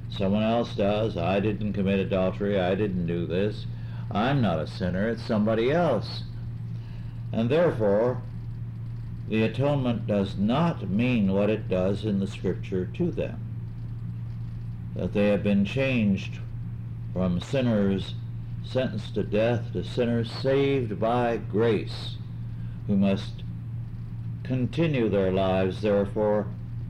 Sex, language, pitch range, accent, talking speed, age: male, English, 100-115 Hz, American, 120 wpm, 60-79